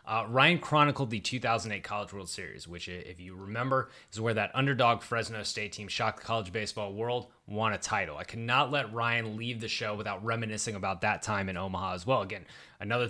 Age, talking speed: 20-39, 205 wpm